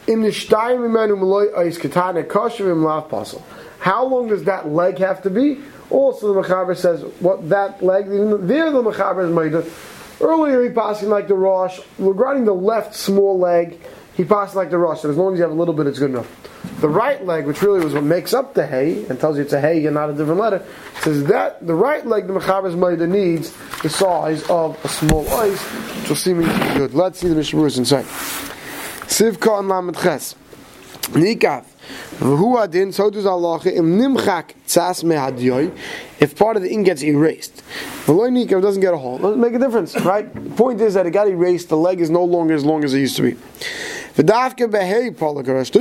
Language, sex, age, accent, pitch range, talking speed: English, male, 30-49, American, 160-205 Hz, 175 wpm